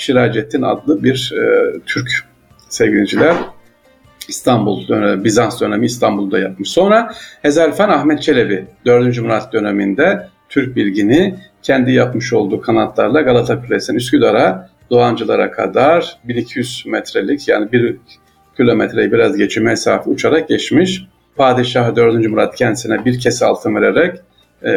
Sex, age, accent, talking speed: male, 50-69, native, 120 wpm